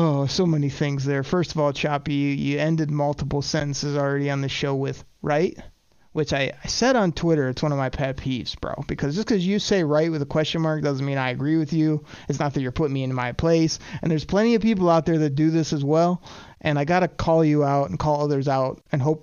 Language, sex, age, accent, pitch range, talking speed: English, male, 30-49, American, 145-200 Hz, 260 wpm